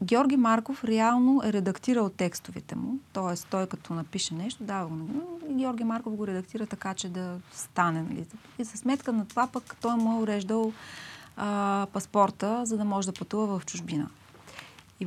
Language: Bulgarian